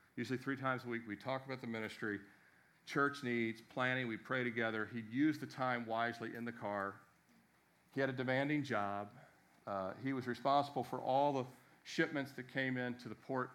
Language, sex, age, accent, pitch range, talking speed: English, male, 50-69, American, 110-140 Hz, 185 wpm